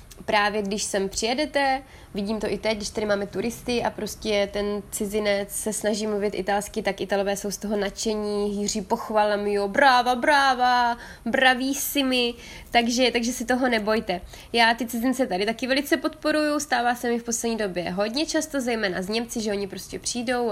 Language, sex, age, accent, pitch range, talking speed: Czech, female, 20-39, native, 205-255 Hz, 180 wpm